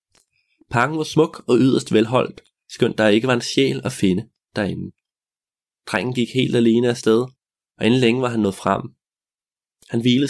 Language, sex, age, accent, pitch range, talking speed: Danish, male, 20-39, native, 100-130 Hz, 170 wpm